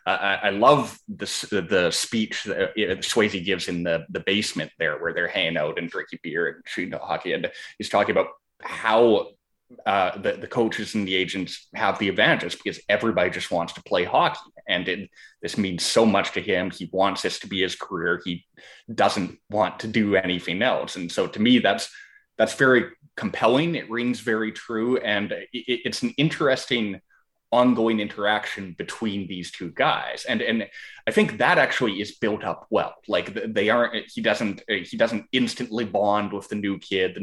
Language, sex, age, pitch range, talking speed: English, male, 20-39, 95-120 Hz, 185 wpm